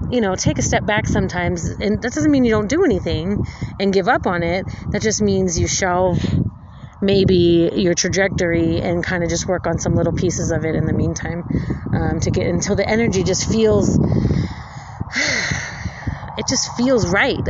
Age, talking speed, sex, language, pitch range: 30-49, 185 wpm, female, English, 175-230 Hz